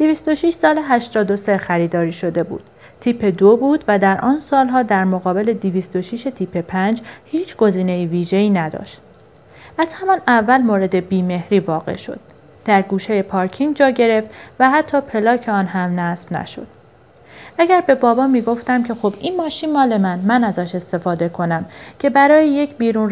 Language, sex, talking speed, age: Persian, female, 160 wpm, 30-49